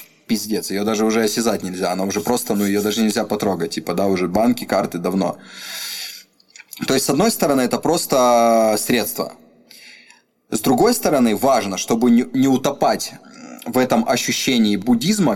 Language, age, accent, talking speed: Russian, 20-39, native, 150 wpm